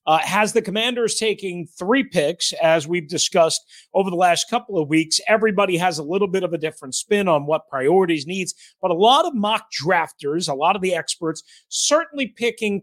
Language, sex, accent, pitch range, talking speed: English, male, American, 175-225 Hz, 195 wpm